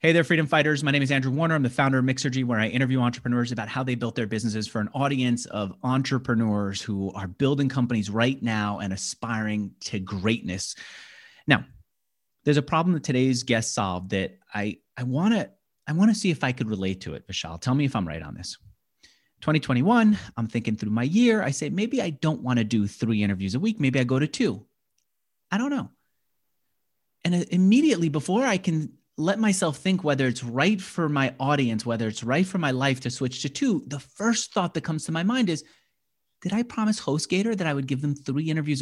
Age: 30-49